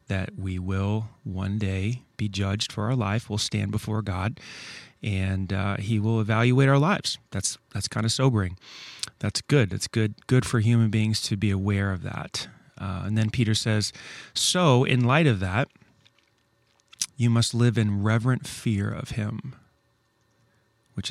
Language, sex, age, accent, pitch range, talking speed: English, male, 30-49, American, 105-120 Hz, 165 wpm